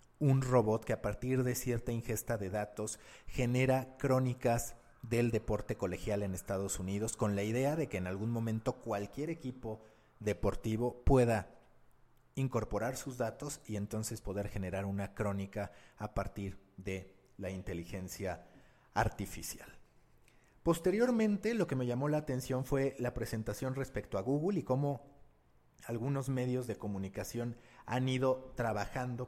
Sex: male